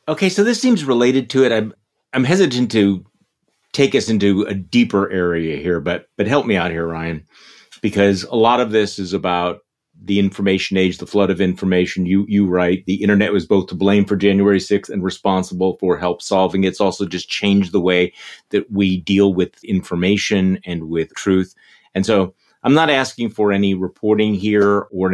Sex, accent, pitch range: male, American, 95-110 Hz